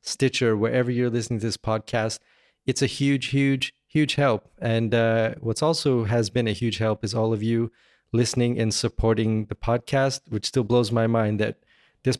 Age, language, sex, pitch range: 20-39, English, male, 110-125 Hz